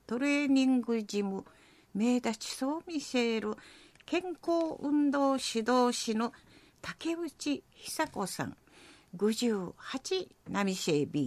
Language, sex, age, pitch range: Japanese, female, 50-69, 230-310 Hz